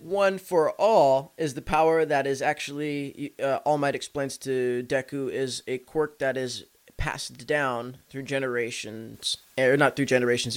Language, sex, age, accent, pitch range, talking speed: English, male, 20-39, American, 130-150 Hz, 160 wpm